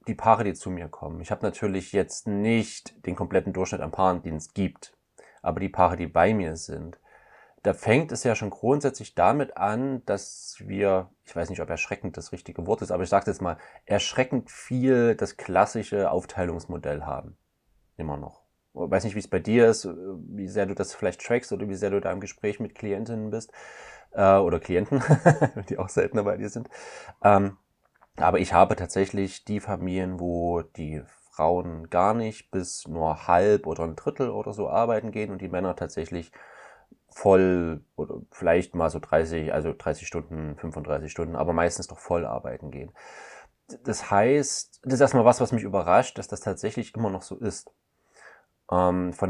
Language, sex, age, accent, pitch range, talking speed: German, male, 30-49, German, 85-110 Hz, 180 wpm